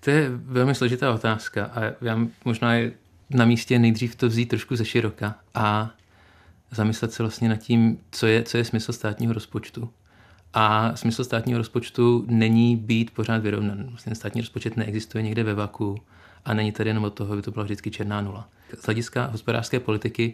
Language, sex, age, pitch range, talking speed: Czech, male, 30-49, 110-120 Hz, 175 wpm